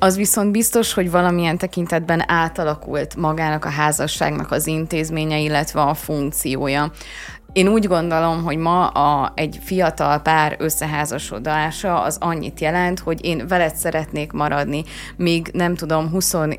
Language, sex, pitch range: Hungarian, female, 150-180 Hz